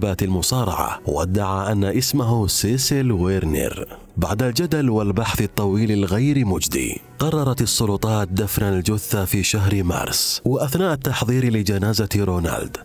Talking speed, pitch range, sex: 105 wpm, 95-125 Hz, male